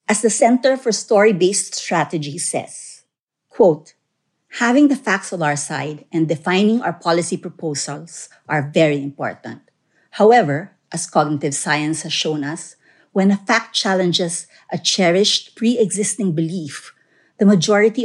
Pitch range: 155-205 Hz